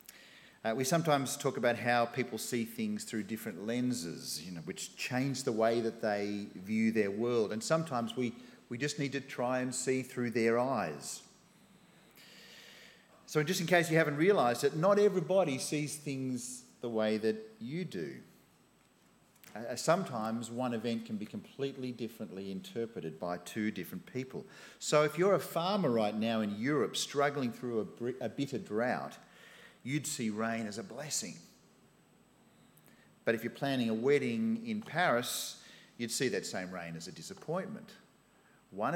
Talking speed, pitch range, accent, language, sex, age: 160 wpm, 115-160 Hz, Australian, English, male, 40-59